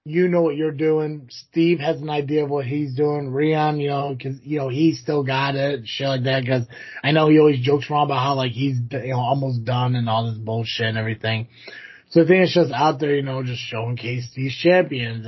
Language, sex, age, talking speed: English, male, 30-49, 235 wpm